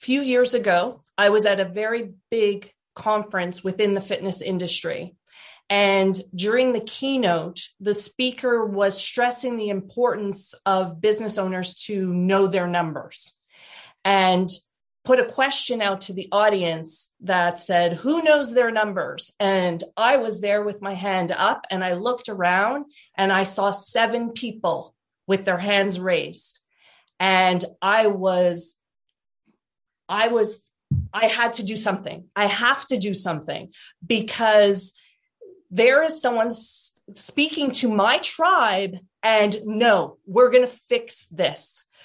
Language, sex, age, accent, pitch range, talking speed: English, female, 40-59, American, 190-245 Hz, 135 wpm